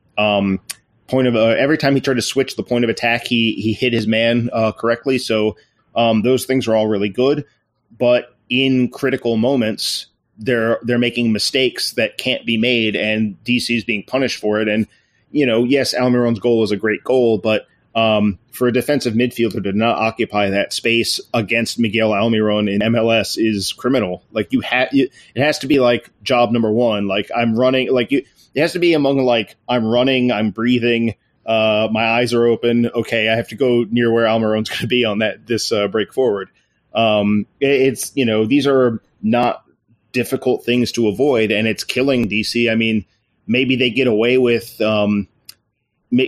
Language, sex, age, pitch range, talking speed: English, male, 30-49, 110-125 Hz, 190 wpm